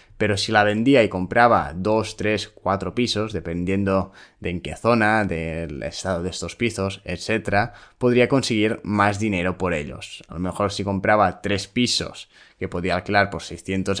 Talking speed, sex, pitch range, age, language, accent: 165 wpm, male, 95-110 Hz, 20-39, Spanish, Spanish